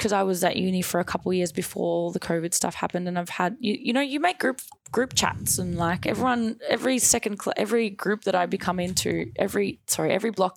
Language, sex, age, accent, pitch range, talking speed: English, female, 20-39, Australian, 175-225 Hz, 235 wpm